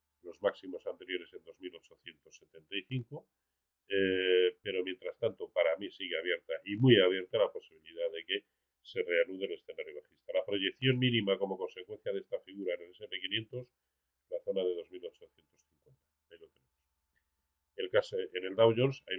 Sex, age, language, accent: male, 40-59, Spanish, Spanish